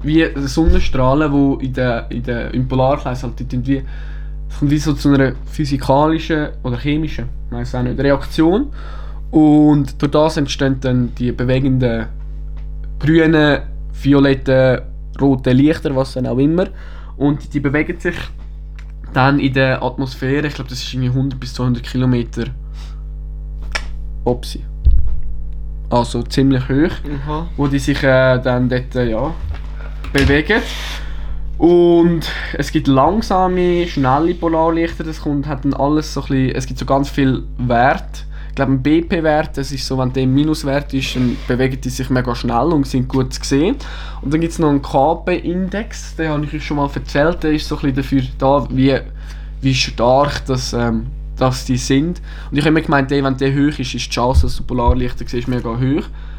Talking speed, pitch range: 170 wpm, 125-150 Hz